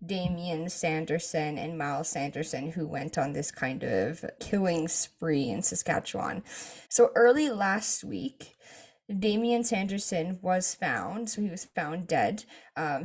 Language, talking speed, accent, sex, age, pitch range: English, 135 wpm, American, female, 20-39, 170-220 Hz